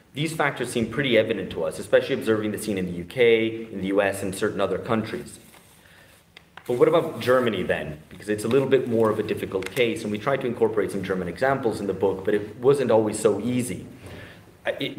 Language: English